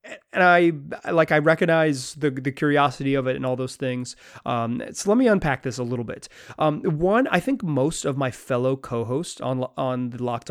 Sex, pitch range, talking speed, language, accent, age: male, 125-160 Hz, 205 wpm, English, American, 30-49